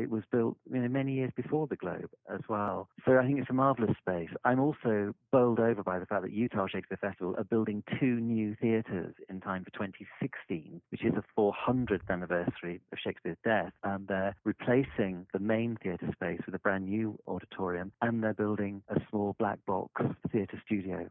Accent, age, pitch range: British, 40-59, 95-115 Hz